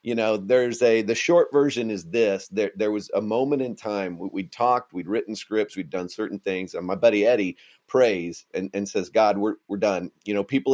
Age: 40-59